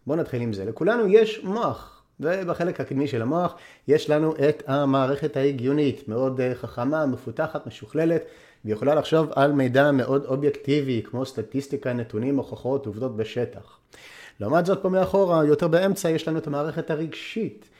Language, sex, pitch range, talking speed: Hebrew, male, 125-170 Hz, 145 wpm